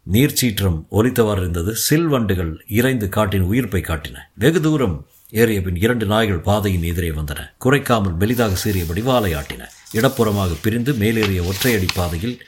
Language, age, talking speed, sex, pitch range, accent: Tamil, 50-69, 125 wpm, male, 90-120 Hz, native